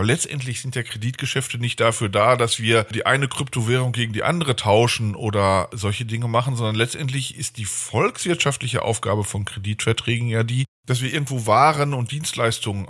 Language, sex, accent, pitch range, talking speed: German, male, German, 115-155 Hz, 165 wpm